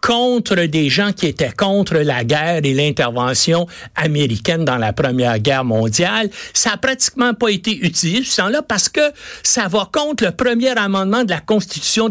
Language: French